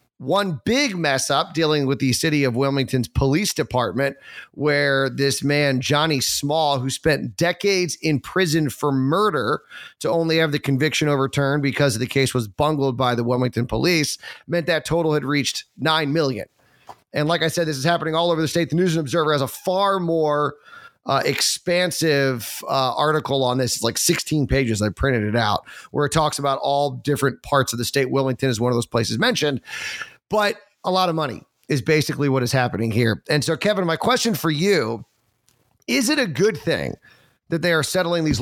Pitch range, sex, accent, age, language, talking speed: 130-165 Hz, male, American, 30-49, English, 190 wpm